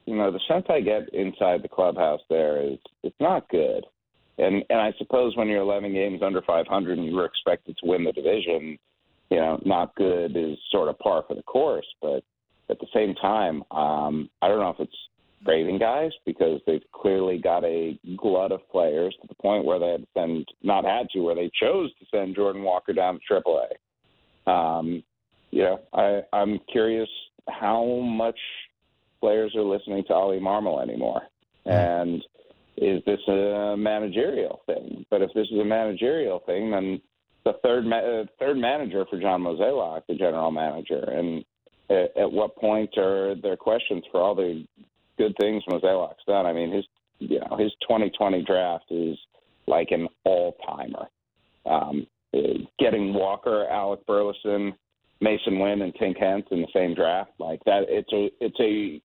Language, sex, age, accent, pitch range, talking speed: English, male, 40-59, American, 85-110 Hz, 175 wpm